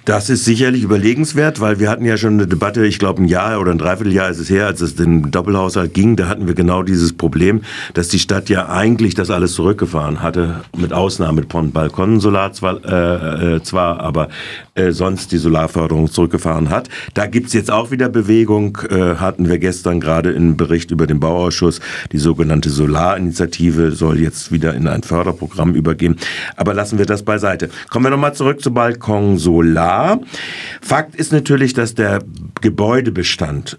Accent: German